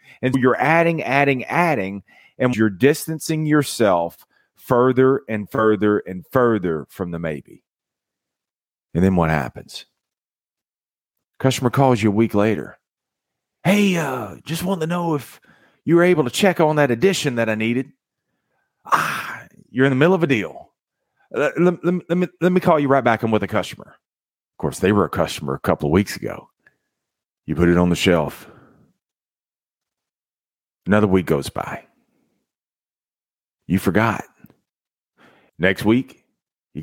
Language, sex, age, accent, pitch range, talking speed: English, male, 40-59, American, 100-150 Hz, 155 wpm